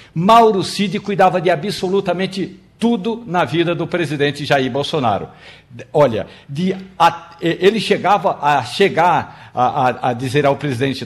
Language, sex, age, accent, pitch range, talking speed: Portuguese, male, 60-79, Brazilian, 145-195 Hz, 135 wpm